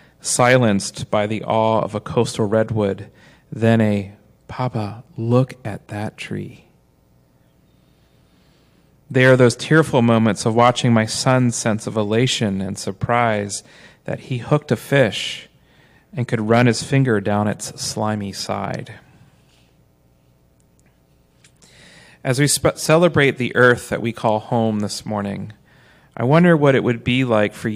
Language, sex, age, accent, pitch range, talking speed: English, male, 40-59, American, 105-125 Hz, 135 wpm